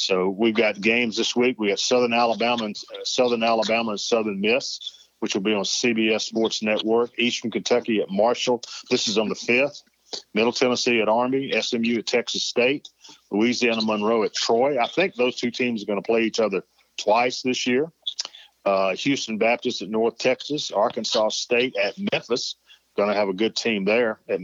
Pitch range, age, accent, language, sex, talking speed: 110-125 Hz, 40-59, American, English, male, 180 wpm